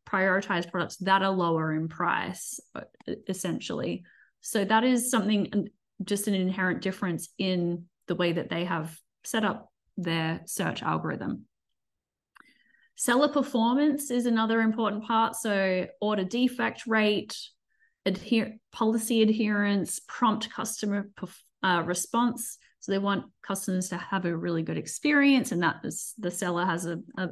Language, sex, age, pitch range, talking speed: English, female, 20-39, 190-225 Hz, 135 wpm